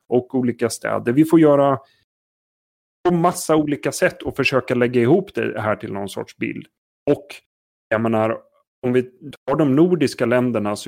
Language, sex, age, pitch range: Swedish, male, 30-49, 110-135 Hz